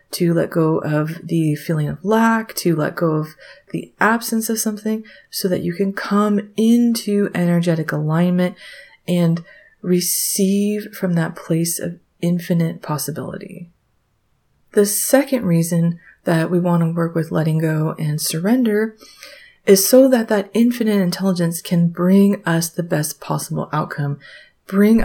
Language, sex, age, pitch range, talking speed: English, female, 30-49, 165-205 Hz, 140 wpm